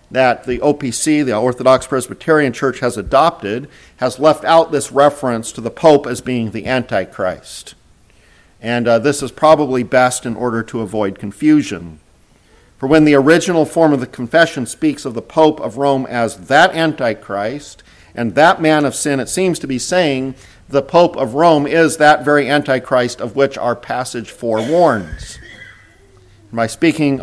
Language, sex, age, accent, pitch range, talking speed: English, male, 50-69, American, 115-145 Hz, 165 wpm